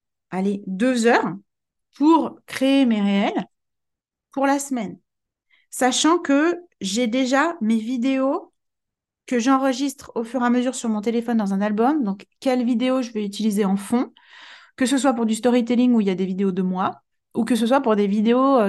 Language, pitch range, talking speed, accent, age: French, 195-245 Hz, 185 wpm, French, 30-49